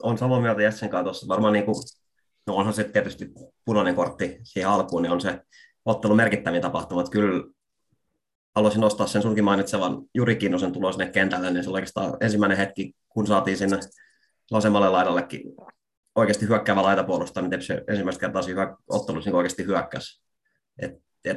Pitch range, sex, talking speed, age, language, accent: 95-110 Hz, male, 150 wpm, 30-49, Finnish, native